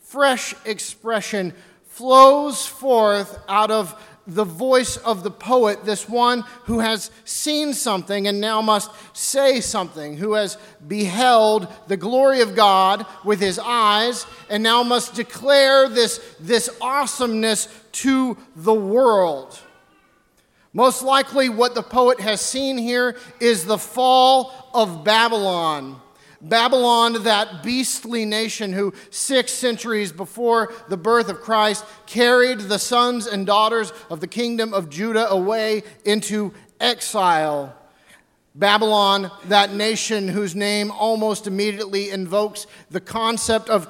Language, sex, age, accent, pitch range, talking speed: English, male, 40-59, American, 200-235 Hz, 125 wpm